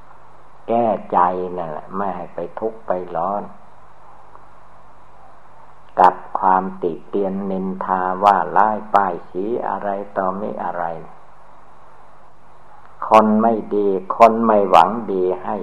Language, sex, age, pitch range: Thai, male, 60-79, 95-105 Hz